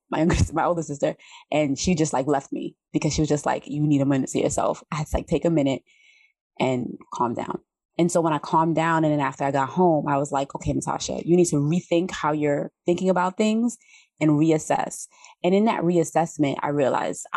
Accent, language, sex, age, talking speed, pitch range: American, English, female, 20-39, 230 wpm, 145-180 Hz